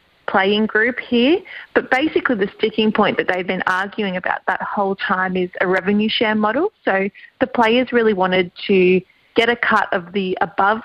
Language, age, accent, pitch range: English, 30-49, Australian, 185-235 Hz